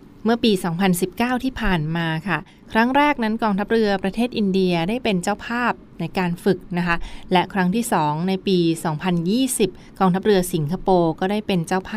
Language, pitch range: Thai, 170-205 Hz